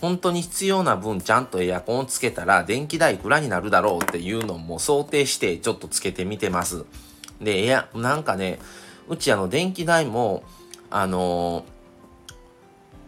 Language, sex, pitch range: Japanese, male, 95-145 Hz